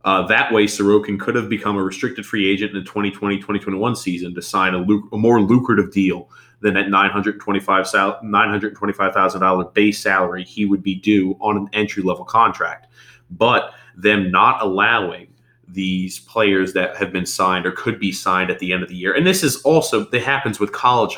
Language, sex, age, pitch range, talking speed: English, male, 30-49, 95-110 Hz, 180 wpm